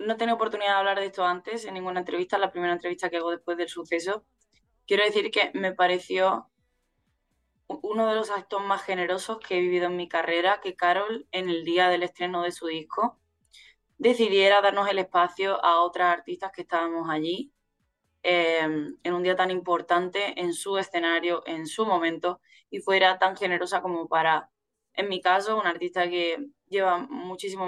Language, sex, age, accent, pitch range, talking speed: Spanish, female, 10-29, Spanish, 165-185 Hz, 180 wpm